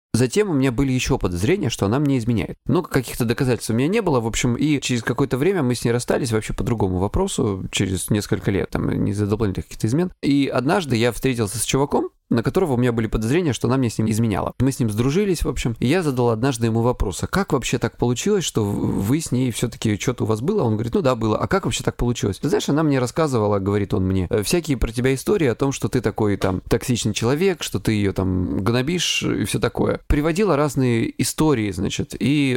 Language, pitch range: Russian, 110-140 Hz